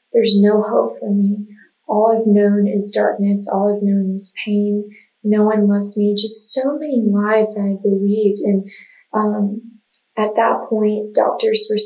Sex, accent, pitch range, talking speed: female, American, 205-225 Hz, 160 wpm